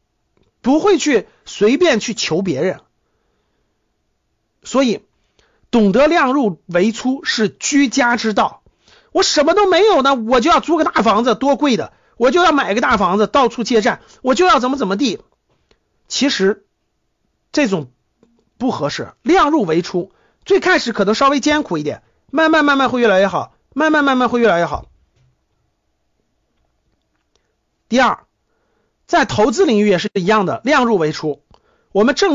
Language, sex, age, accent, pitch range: Chinese, male, 50-69, native, 215-285 Hz